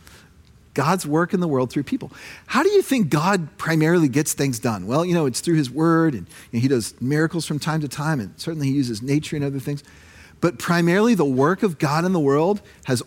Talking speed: 230 wpm